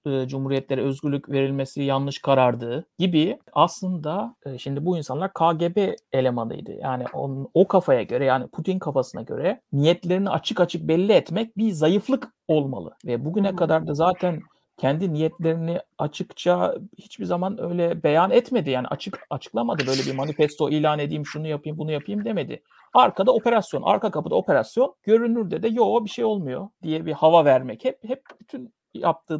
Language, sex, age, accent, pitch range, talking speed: Turkish, male, 60-79, native, 145-195 Hz, 150 wpm